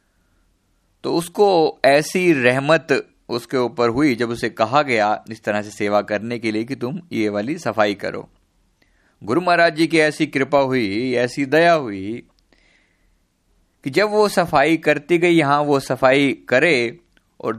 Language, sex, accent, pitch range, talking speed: Hindi, male, native, 110-155 Hz, 155 wpm